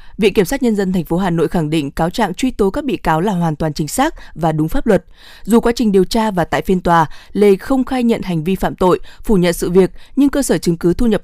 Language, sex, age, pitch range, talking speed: Vietnamese, female, 20-39, 175-225 Hz, 295 wpm